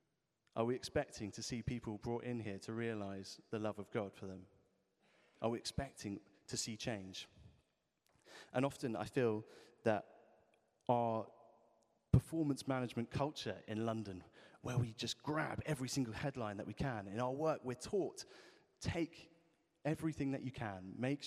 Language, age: English, 30-49